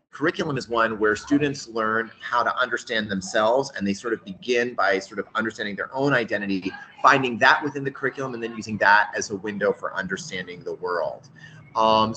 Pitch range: 105-140 Hz